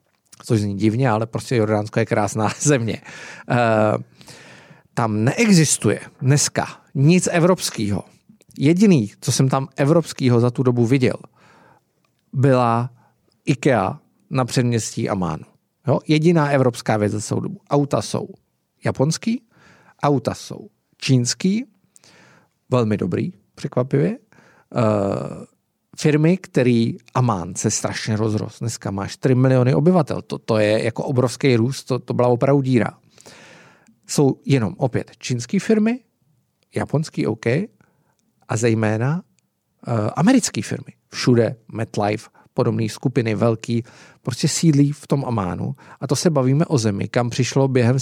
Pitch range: 115-150 Hz